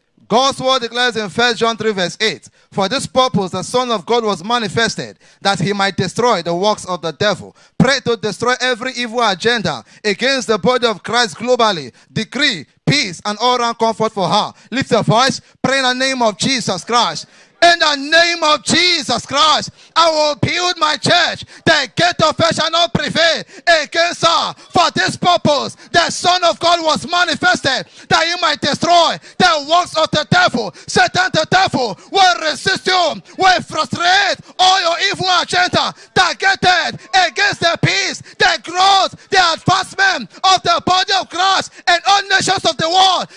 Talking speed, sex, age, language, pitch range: 175 wpm, male, 30-49, English, 245-380 Hz